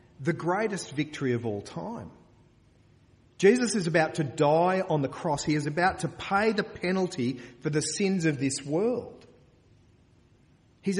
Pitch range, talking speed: 115-165 Hz, 155 wpm